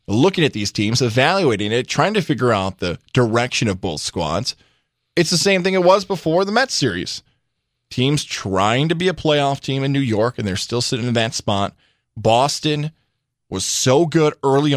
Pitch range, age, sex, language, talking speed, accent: 115-155 Hz, 20-39, male, English, 190 wpm, American